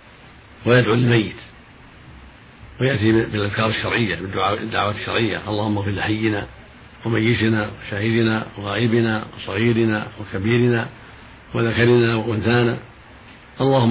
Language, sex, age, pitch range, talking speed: Arabic, male, 60-79, 110-120 Hz, 80 wpm